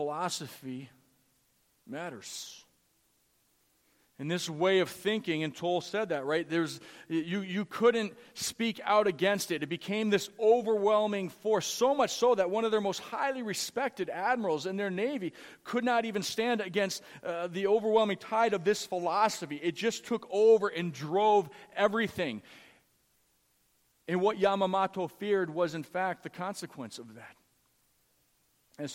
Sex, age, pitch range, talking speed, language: male, 40-59, 150-205 Hz, 145 wpm, English